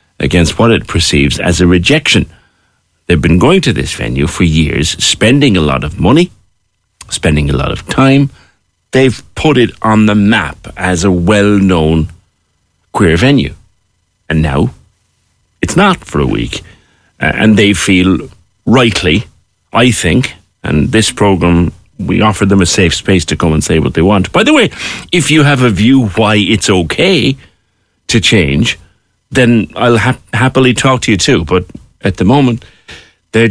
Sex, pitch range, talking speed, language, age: male, 85-115 Hz, 165 wpm, English, 50-69